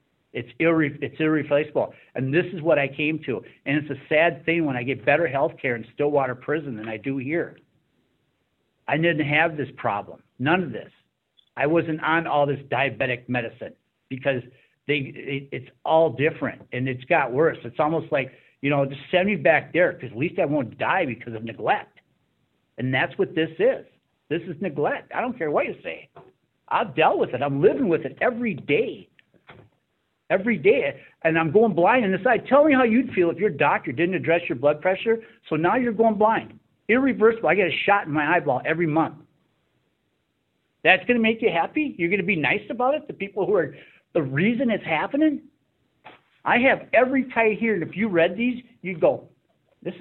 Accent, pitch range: American, 140-210 Hz